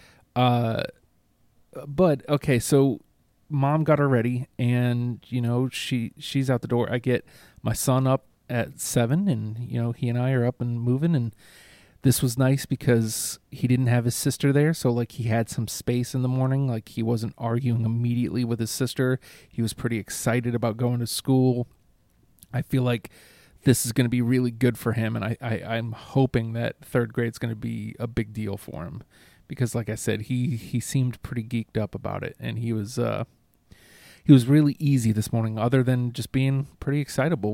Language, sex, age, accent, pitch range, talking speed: English, male, 30-49, American, 115-130 Hz, 200 wpm